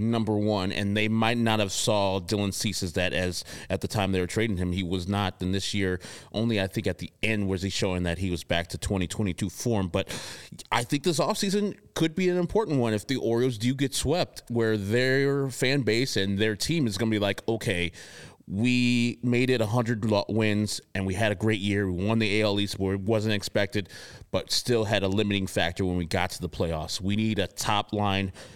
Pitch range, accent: 95-115 Hz, American